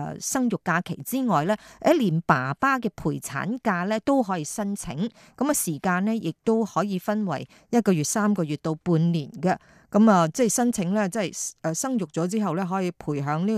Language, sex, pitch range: Chinese, female, 165-215 Hz